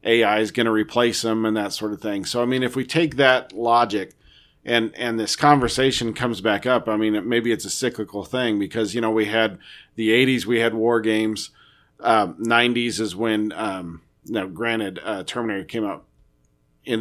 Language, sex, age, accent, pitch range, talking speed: English, male, 40-59, American, 100-120 Hz, 200 wpm